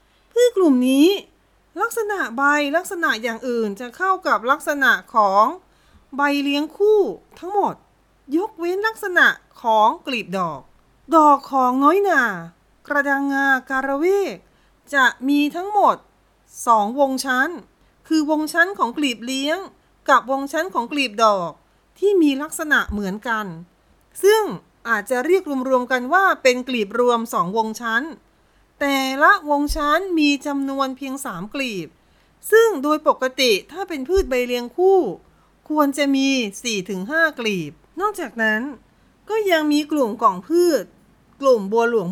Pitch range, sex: 245-345 Hz, female